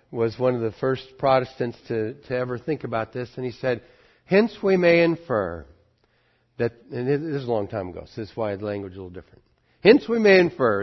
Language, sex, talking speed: English, male, 225 wpm